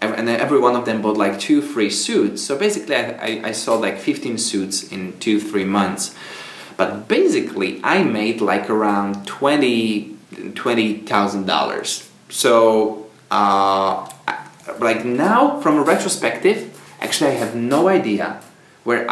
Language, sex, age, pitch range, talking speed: English, male, 20-39, 100-125 Hz, 150 wpm